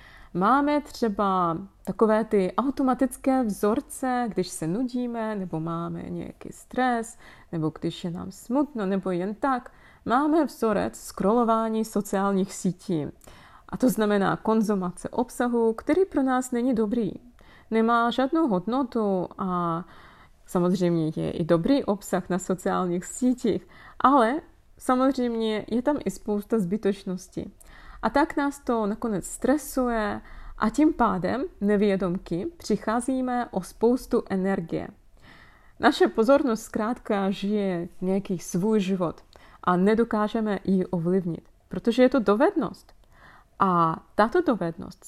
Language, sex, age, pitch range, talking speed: Czech, female, 30-49, 185-245 Hz, 115 wpm